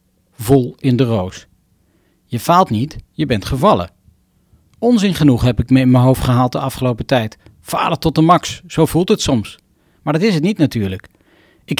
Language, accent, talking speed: Dutch, Dutch, 190 wpm